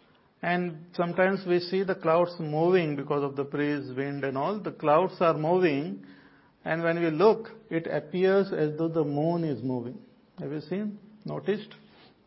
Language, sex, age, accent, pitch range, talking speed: English, male, 50-69, Indian, 145-185 Hz, 165 wpm